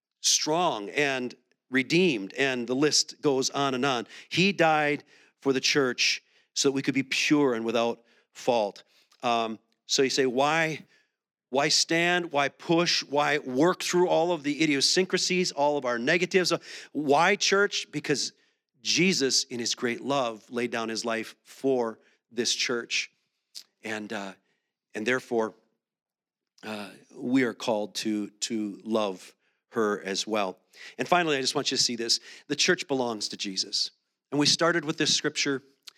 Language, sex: English, male